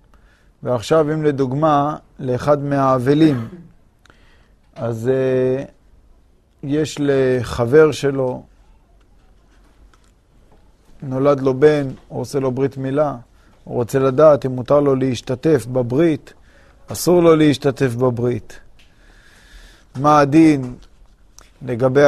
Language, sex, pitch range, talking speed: Hebrew, male, 130-150 Hz, 90 wpm